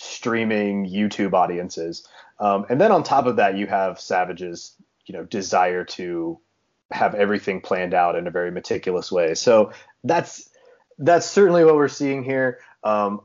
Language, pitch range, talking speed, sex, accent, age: English, 100-135 Hz, 160 wpm, male, American, 30-49